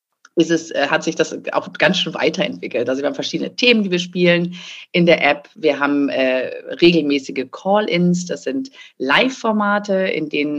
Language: German